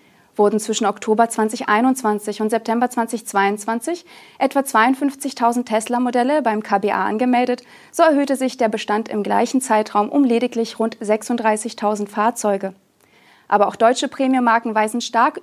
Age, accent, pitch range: 30-49, German, 210-255 Hz